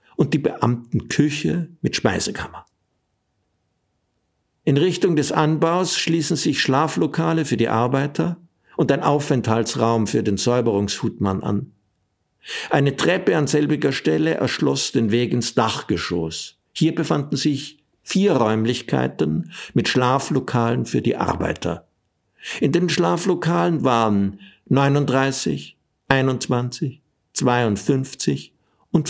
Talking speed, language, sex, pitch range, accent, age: 105 wpm, German, male, 105-150 Hz, German, 60-79